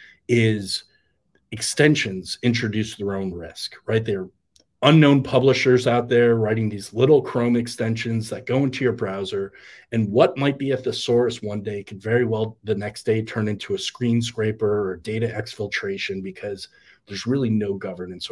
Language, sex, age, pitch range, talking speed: English, male, 30-49, 105-130 Hz, 160 wpm